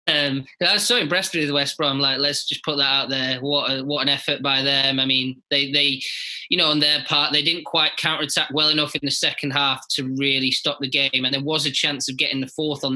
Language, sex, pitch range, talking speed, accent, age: English, male, 135-155 Hz, 270 wpm, British, 20-39